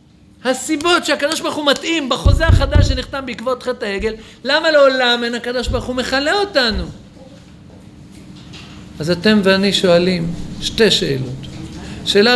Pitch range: 180-270 Hz